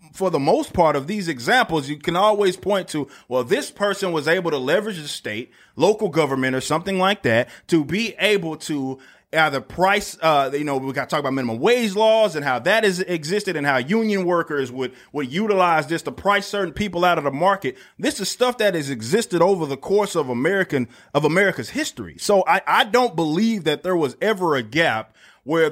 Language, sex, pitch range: English, male, 135-195 Hz